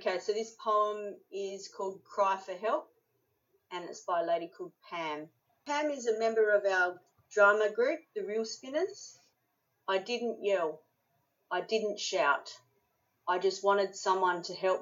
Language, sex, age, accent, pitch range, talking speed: English, female, 40-59, Australian, 165-210 Hz, 160 wpm